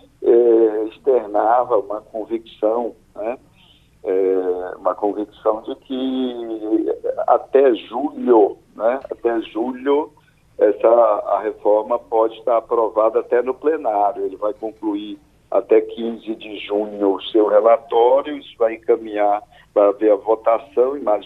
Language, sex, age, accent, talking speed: Portuguese, male, 60-79, Brazilian, 120 wpm